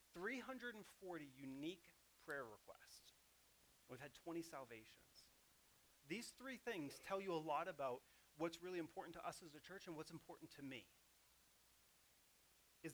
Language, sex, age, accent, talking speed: English, male, 30-49, American, 140 wpm